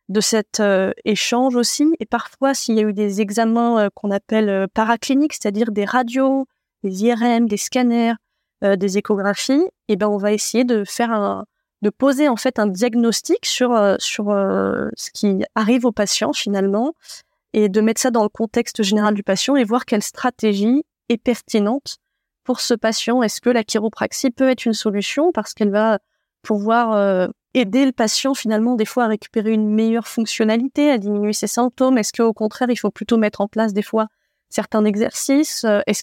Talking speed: 190 wpm